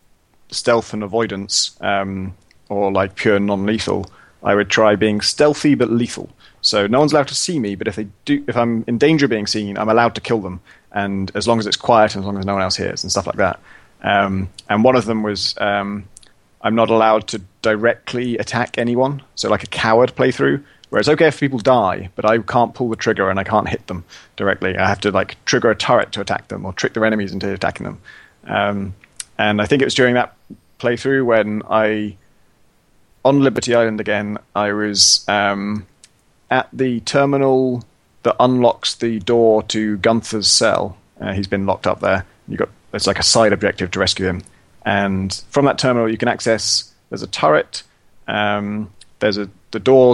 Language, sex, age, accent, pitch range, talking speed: English, male, 30-49, British, 100-120 Hz, 200 wpm